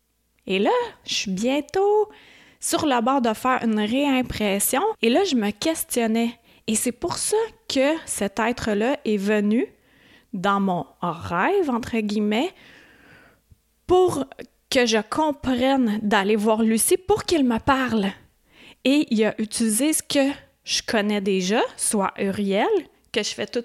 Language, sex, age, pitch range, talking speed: French, female, 30-49, 200-255 Hz, 145 wpm